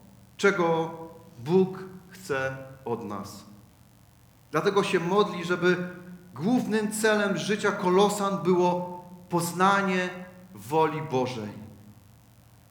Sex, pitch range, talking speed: male, 165-210 Hz, 80 wpm